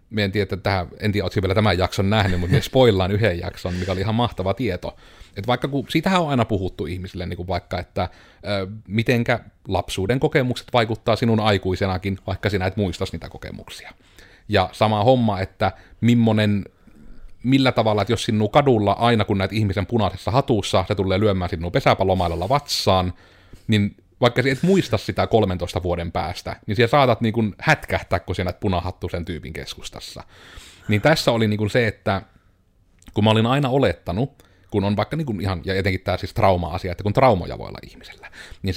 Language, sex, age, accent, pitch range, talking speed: Finnish, male, 30-49, native, 90-110 Hz, 165 wpm